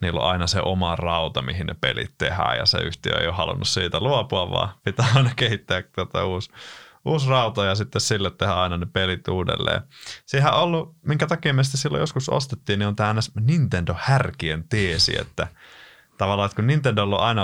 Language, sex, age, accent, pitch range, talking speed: Finnish, male, 20-39, native, 90-125 Hz, 190 wpm